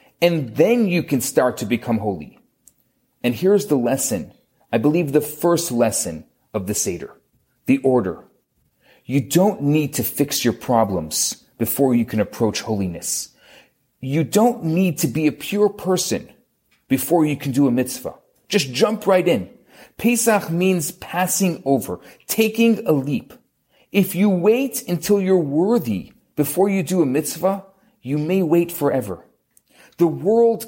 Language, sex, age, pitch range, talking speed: English, male, 30-49, 135-195 Hz, 150 wpm